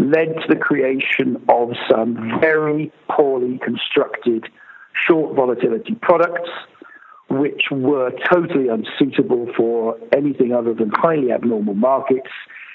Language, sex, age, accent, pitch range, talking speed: English, male, 60-79, British, 125-160 Hz, 110 wpm